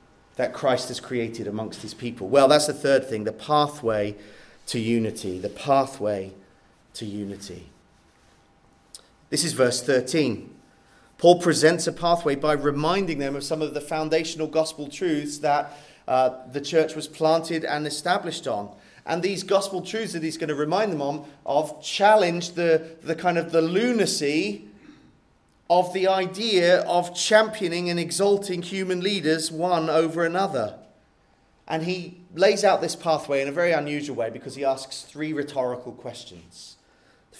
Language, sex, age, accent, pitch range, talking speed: English, male, 30-49, British, 140-195 Hz, 155 wpm